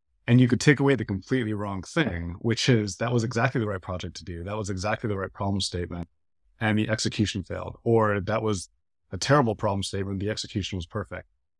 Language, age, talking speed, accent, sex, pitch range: English, 30-49, 210 wpm, American, male, 90-115 Hz